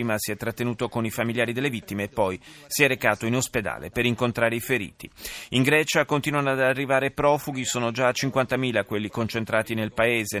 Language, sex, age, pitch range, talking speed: Italian, male, 30-49, 115-150 Hz, 190 wpm